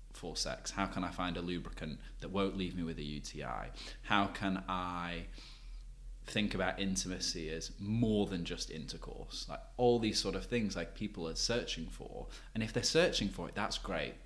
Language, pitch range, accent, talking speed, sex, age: English, 85-105 Hz, British, 190 wpm, male, 20-39